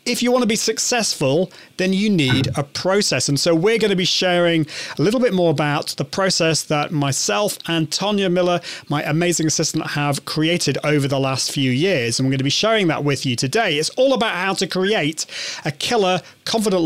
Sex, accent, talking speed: male, British, 210 wpm